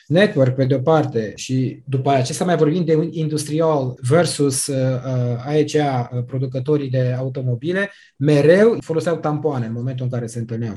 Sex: male